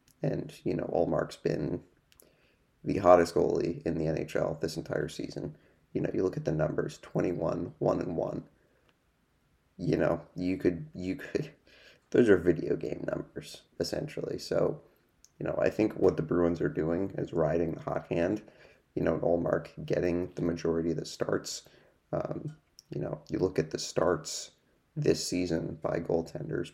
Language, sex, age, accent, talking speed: English, male, 30-49, American, 165 wpm